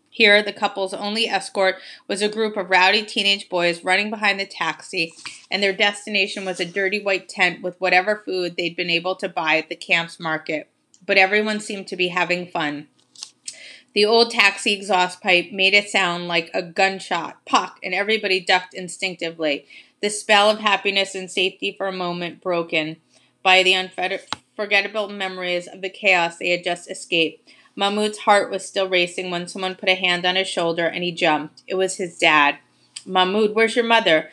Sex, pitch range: female, 175-210 Hz